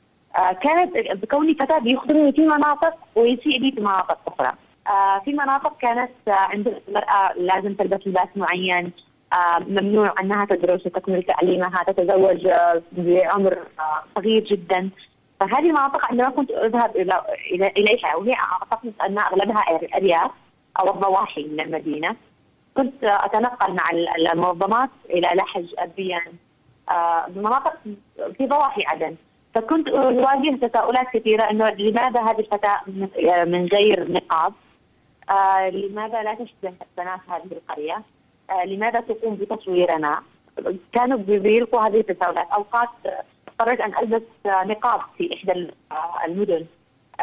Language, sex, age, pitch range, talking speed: Arabic, female, 20-39, 180-240 Hz, 125 wpm